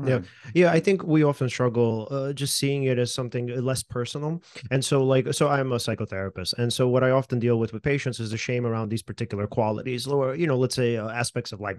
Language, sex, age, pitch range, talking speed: English, male, 30-49, 120-145 Hz, 240 wpm